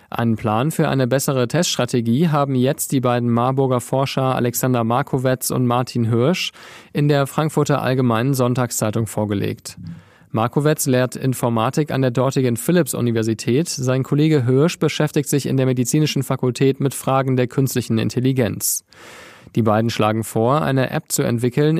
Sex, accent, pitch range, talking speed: male, German, 120-140 Hz, 145 wpm